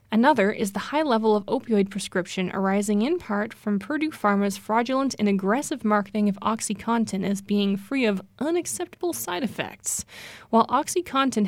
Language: English